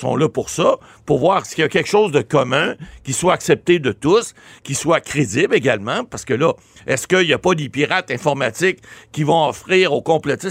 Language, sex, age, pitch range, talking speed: French, male, 60-79, 145-195 Hz, 215 wpm